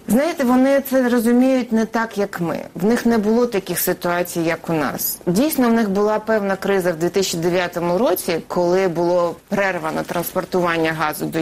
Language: Ukrainian